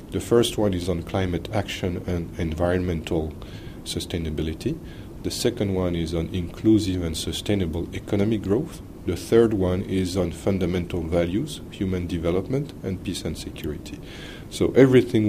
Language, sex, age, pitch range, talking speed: English, male, 40-59, 85-100 Hz, 135 wpm